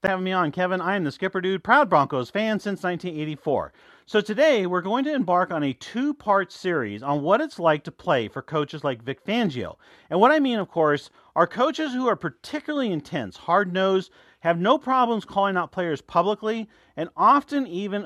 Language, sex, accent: English, male, American